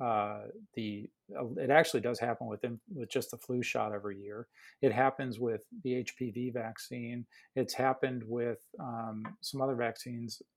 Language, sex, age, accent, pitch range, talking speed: English, male, 40-59, American, 115-135 Hz, 160 wpm